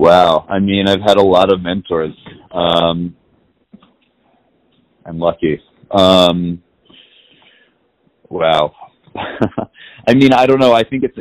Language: English